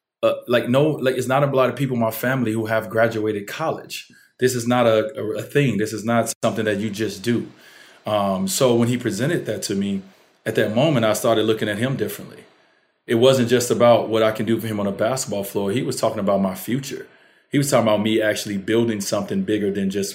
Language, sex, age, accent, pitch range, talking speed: English, male, 30-49, American, 100-120 Hz, 235 wpm